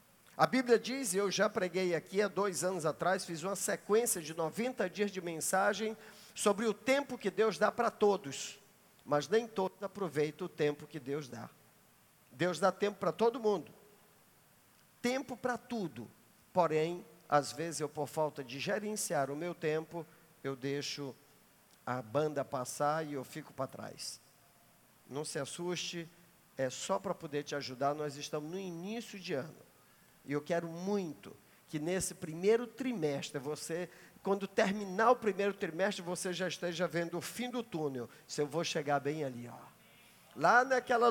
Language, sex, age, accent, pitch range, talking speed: Portuguese, male, 50-69, Brazilian, 155-205 Hz, 165 wpm